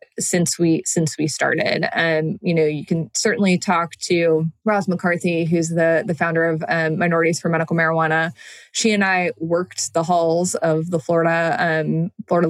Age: 20-39